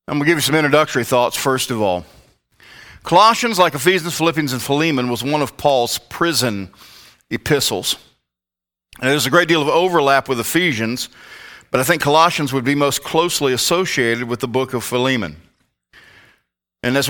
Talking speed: 165 wpm